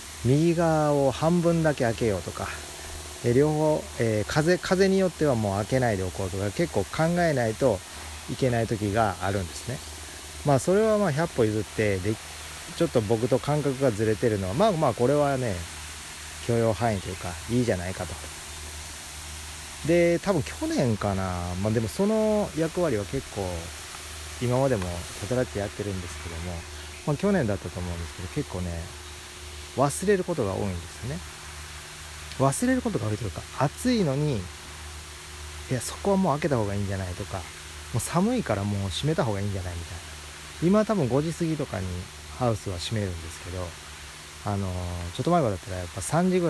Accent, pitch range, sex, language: native, 80-135 Hz, male, Japanese